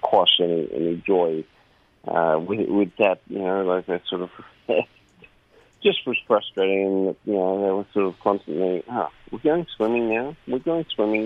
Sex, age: male, 40-59